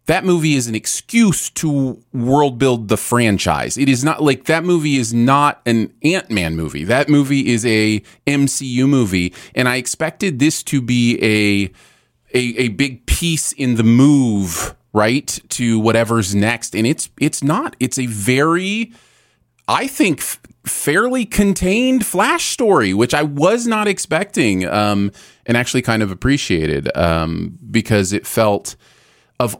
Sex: male